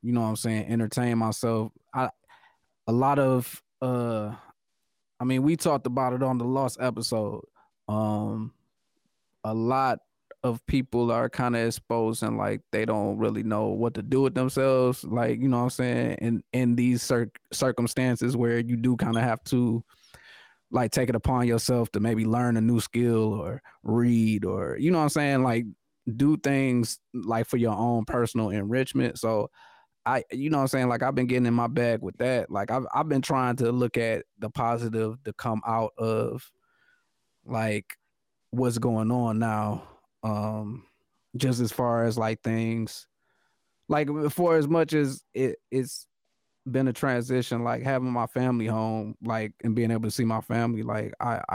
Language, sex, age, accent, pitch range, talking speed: English, male, 20-39, American, 110-125 Hz, 185 wpm